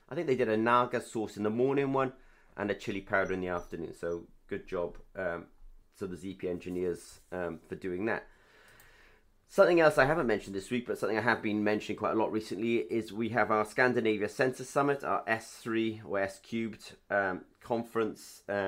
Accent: British